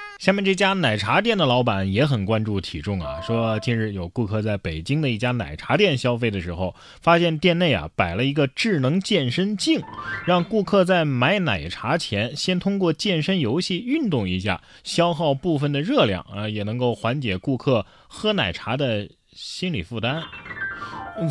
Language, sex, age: Chinese, male, 20-39